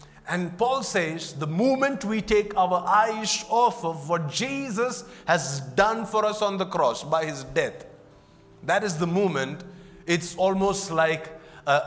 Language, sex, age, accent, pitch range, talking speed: English, male, 30-49, Indian, 150-200 Hz, 155 wpm